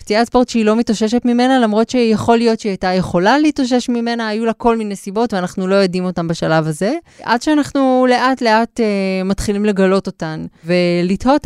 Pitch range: 175-225 Hz